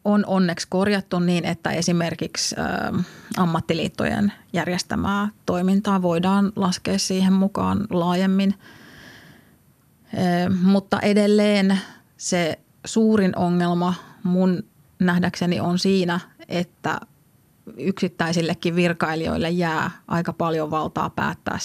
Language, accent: Finnish, native